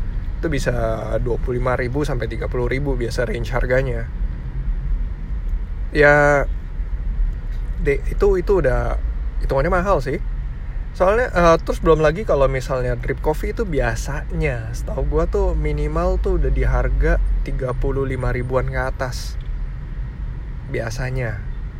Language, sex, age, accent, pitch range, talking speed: Indonesian, male, 20-39, native, 115-135 Hz, 115 wpm